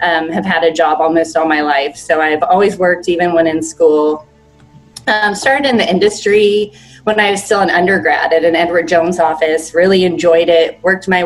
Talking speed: 205 wpm